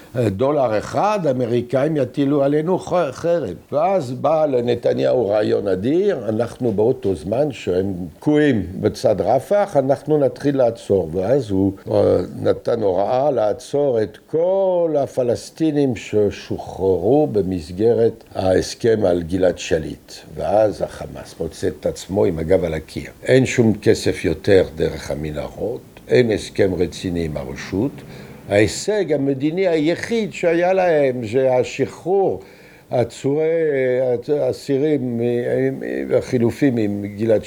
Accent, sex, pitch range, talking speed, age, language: French, male, 100-150 Hz, 110 wpm, 60-79, Hebrew